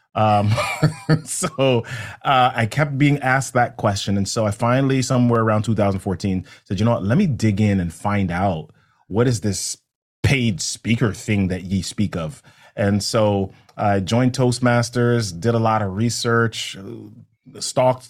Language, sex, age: English, male, 30-49